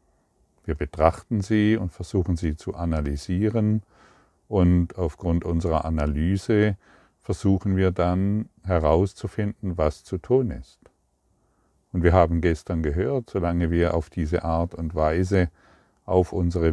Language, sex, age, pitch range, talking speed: German, male, 40-59, 85-100 Hz, 120 wpm